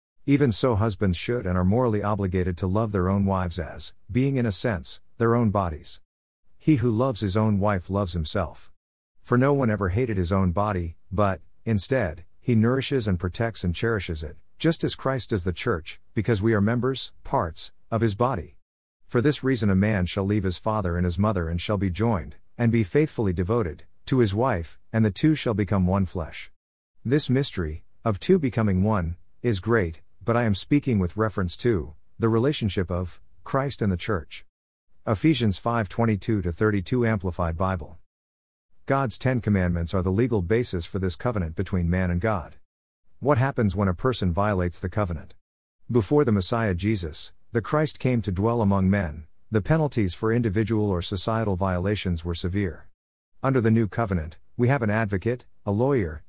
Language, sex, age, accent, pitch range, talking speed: English, male, 50-69, American, 90-115 Hz, 180 wpm